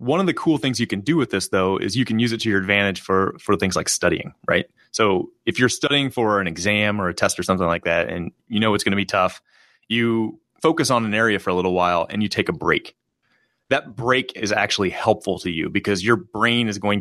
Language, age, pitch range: English, 30-49, 95-115 Hz